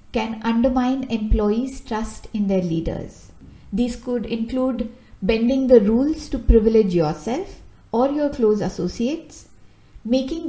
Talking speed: 120 wpm